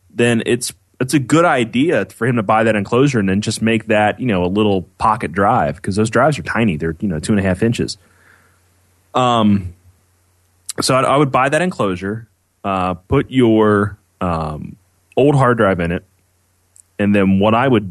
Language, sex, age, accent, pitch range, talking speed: English, male, 20-39, American, 90-115 Hz, 195 wpm